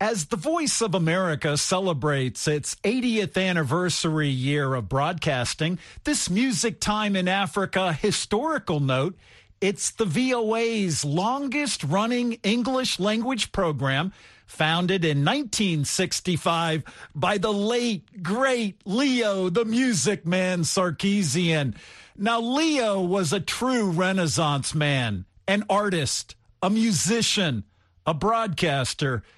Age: 50-69